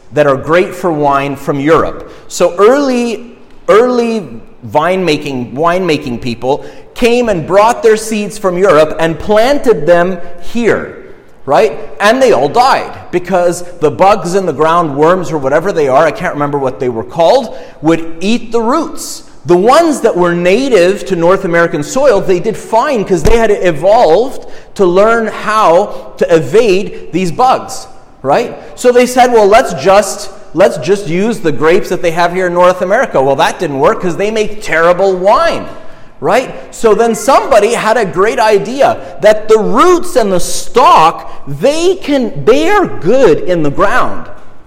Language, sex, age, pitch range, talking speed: English, male, 30-49, 165-230 Hz, 170 wpm